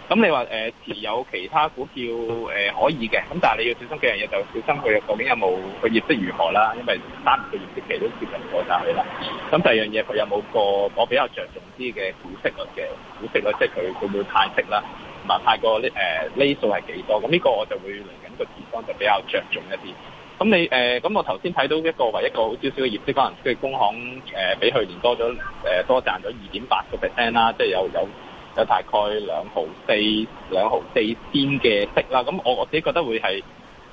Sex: male